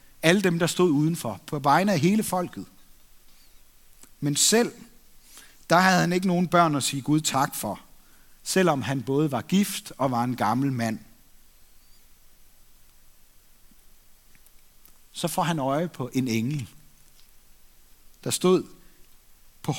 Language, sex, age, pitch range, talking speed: Danish, male, 60-79, 135-185 Hz, 130 wpm